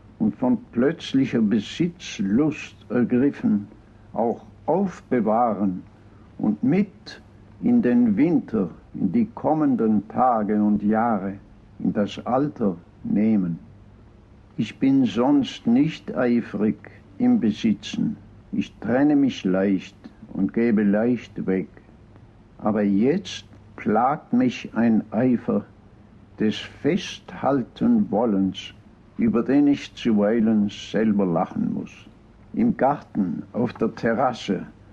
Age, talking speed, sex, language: 60-79, 100 wpm, male, German